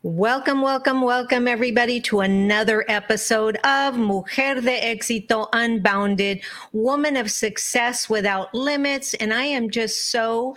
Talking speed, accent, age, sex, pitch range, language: 125 wpm, American, 40-59, female, 200-250 Hz, English